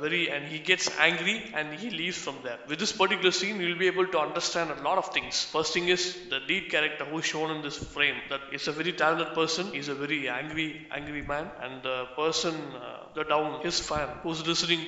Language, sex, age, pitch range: Thai, male, 20-39, 140-175 Hz